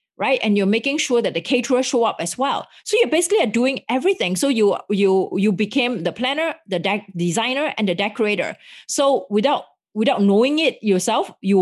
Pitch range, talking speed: 190-255 Hz, 195 wpm